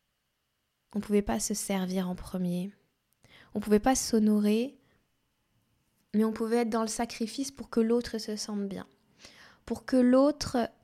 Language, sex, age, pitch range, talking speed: French, female, 20-39, 200-235 Hz, 160 wpm